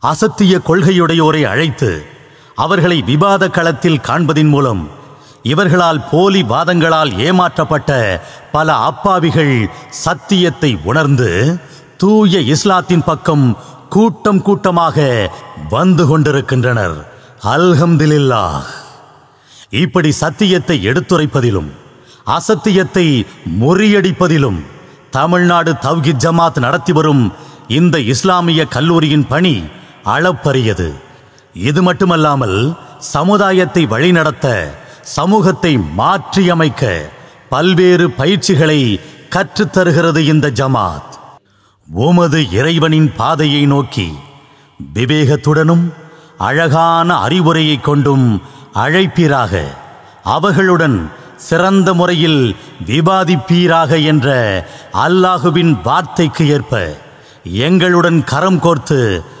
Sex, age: male, 50-69